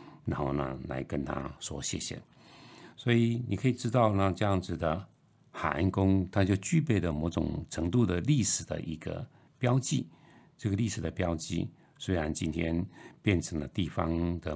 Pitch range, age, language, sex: 85-120 Hz, 60-79, Chinese, male